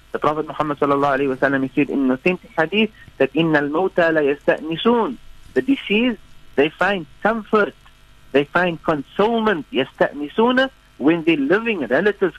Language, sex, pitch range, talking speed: English, male, 140-190 Hz, 120 wpm